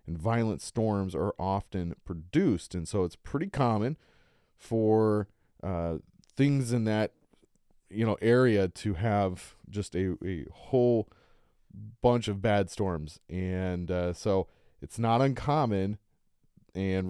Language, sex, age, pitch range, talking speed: English, male, 30-49, 90-110 Hz, 125 wpm